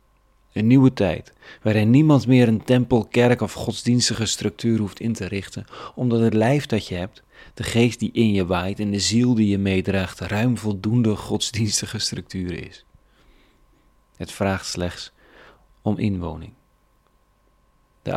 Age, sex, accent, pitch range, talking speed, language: 40-59, male, Dutch, 95-110 Hz, 150 wpm, Dutch